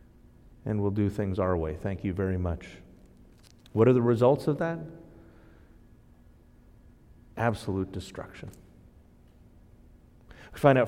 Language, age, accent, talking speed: English, 40-59, American, 115 wpm